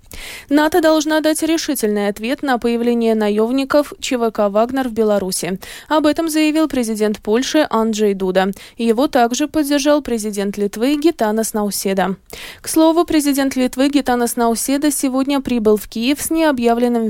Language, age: Russian, 20-39